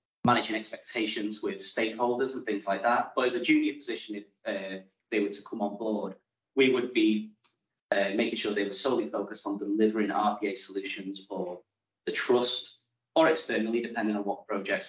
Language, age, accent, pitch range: English, 30-49, British, 100-120 Hz